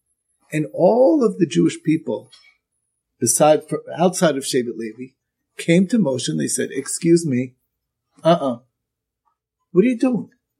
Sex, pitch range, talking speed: male, 140-220 Hz, 135 wpm